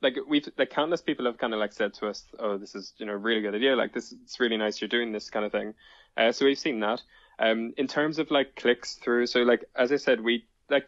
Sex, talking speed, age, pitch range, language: male, 280 wpm, 10-29, 105-125 Hz, English